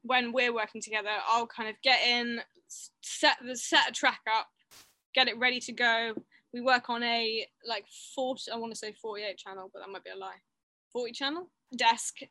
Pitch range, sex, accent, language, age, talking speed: 220-265 Hz, female, British, English, 10-29, 200 wpm